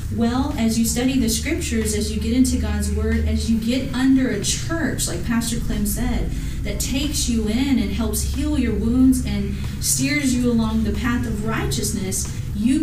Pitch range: 185-240 Hz